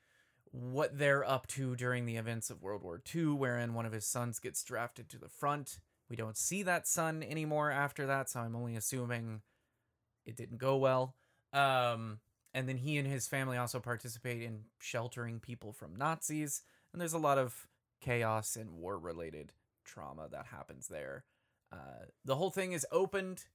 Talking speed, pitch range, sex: 175 wpm, 115-135 Hz, male